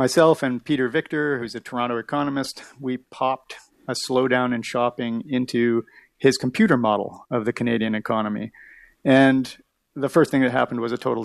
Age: 40-59